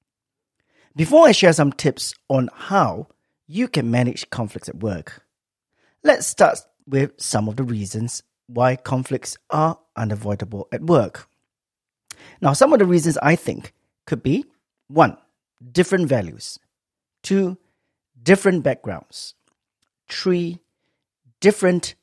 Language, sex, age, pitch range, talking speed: English, male, 40-59, 125-180 Hz, 115 wpm